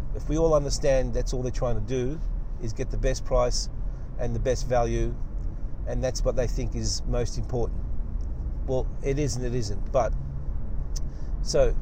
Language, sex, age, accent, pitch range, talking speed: English, male, 50-69, Australian, 115-140 Hz, 180 wpm